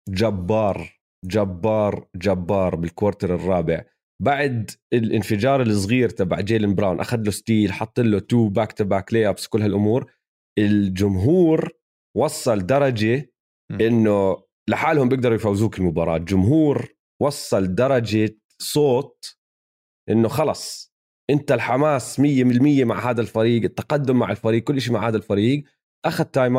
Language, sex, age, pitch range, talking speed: Arabic, male, 30-49, 105-140 Hz, 120 wpm